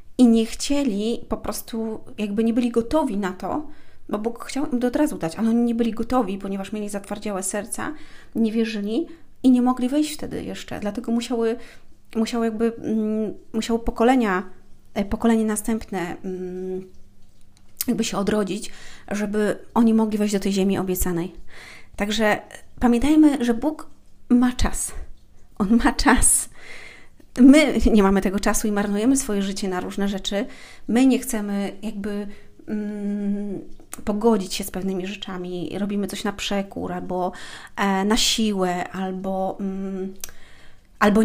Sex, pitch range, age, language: female, 195-235 Hz, 30-49, Polish